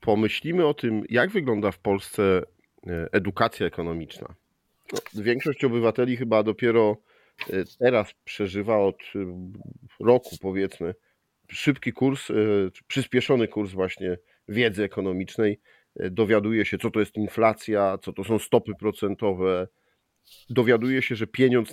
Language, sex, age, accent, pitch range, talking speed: Polish, male, 40-59, native, 95-120 Hz, 110 wpm